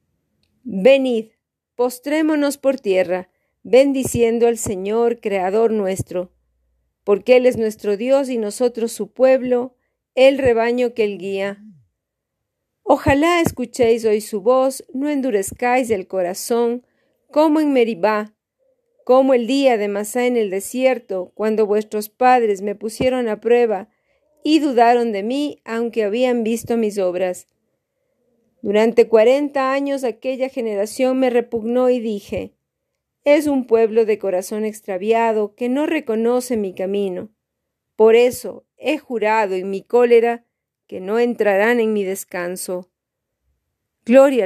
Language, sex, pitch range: Spanish, female, 205-255 Hz